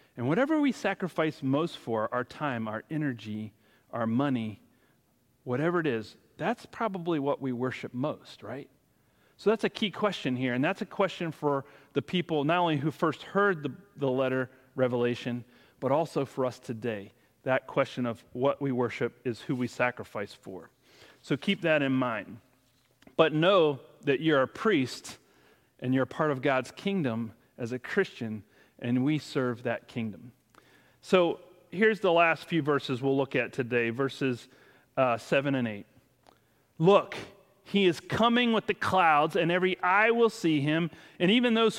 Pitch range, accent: 125-180 Hz, American